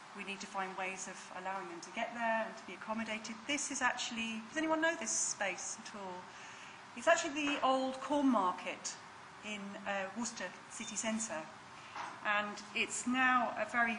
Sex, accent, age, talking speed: female, British, 40-59, 175 wpm